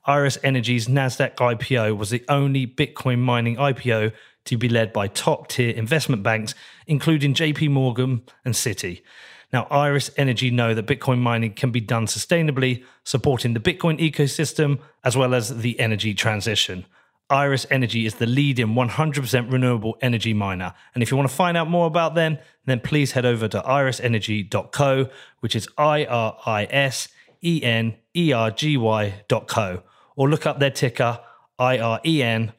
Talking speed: 145 wpm